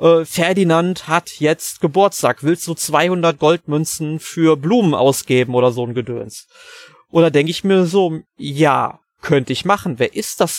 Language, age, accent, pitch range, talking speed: German, 30-49, German, 140-180 Hz, 155 wpm